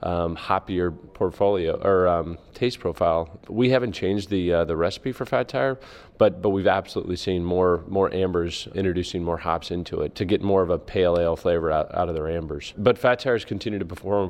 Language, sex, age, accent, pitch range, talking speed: English, male, 30-49, American, 85-95 Hz, 205 wpm